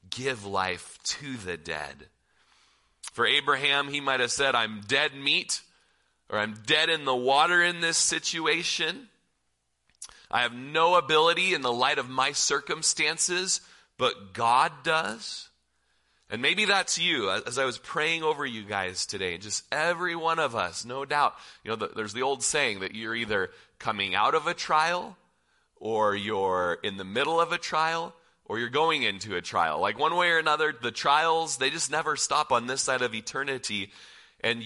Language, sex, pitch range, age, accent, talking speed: English, male, 95-150 Hz, 30-49, American, 175 wpm